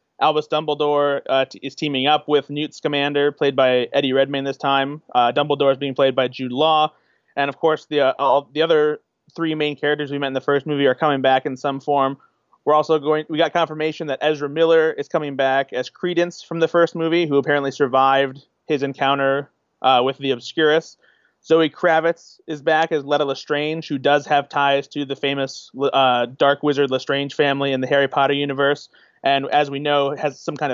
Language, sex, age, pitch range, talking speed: English, male, 30-49, 140-155 Hz, 200 wpm